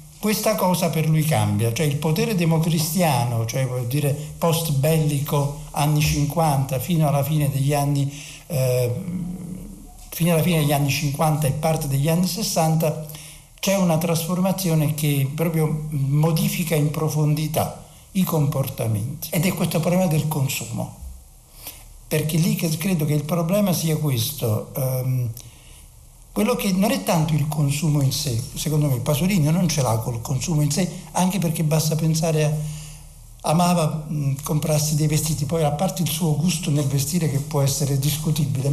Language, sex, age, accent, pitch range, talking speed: Italian, male, 60-79, native, 145-175 Hz, 155 wpm